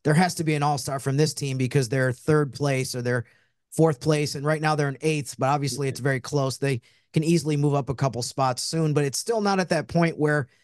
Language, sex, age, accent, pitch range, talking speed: English, male, 30-49, American, 130-155 Hz, 255 wpm